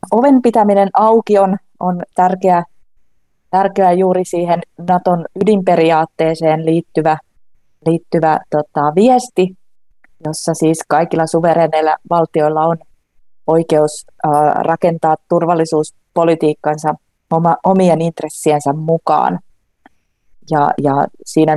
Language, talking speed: Finnish, 90 wpm